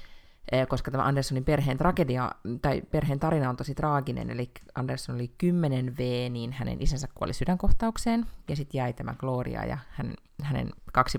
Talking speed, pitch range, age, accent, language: 155 wpm, 120-140 Hz, 30-49, native, Finnish